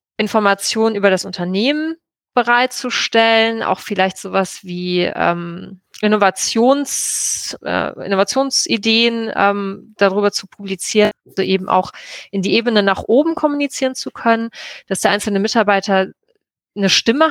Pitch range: 195-230 Hz